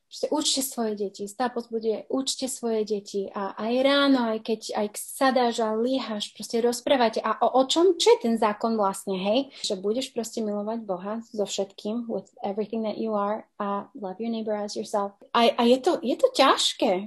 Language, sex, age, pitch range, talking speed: Slovak, female, 30-49, 210-265 Hz, 190 wpm